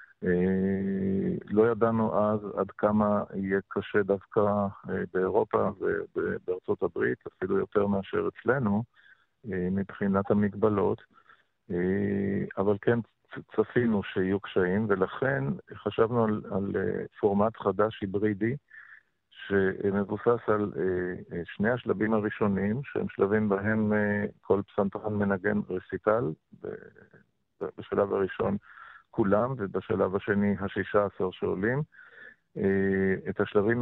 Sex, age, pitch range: male, 50-69, 100-115 Hz